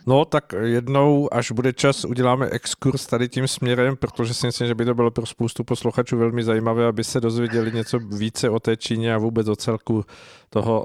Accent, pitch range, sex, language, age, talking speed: native, 110-120 Hz, male, Czech, 50-69, 200 wpm